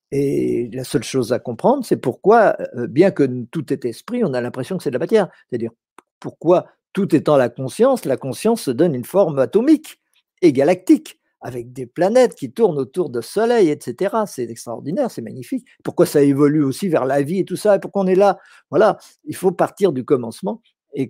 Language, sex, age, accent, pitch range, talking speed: French, male, 50-69, French, 125-170 Hz, 200 wpm